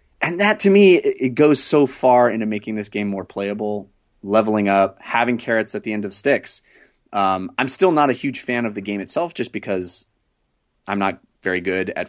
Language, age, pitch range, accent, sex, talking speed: English, 30-49, 105-130 Hz, American, male, 205 wpm